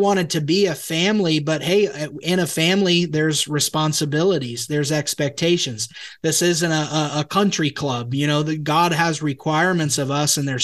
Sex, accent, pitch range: male, American, 145-165 Hz